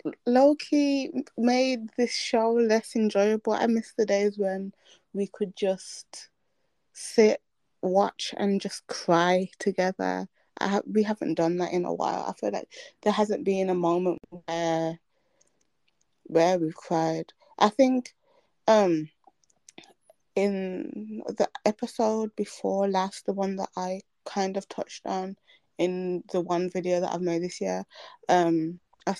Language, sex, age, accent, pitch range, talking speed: English, female, 20-39, British, 175-220 Hz, 140 wpm